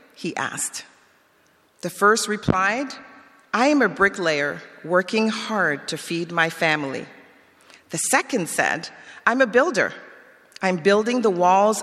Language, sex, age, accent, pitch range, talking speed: English, female, 40-59, American, 165-215 Hz, 125 wpm